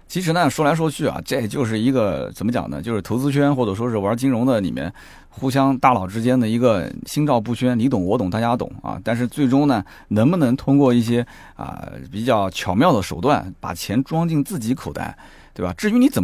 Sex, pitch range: male, 95-145 Hz